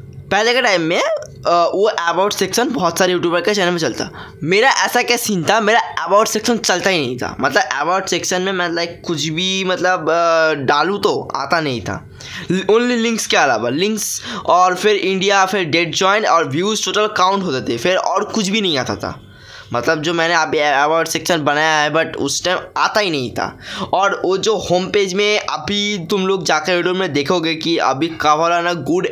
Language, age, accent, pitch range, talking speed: Hindi, 10-29, native, 165-230 Hz, 200 wpm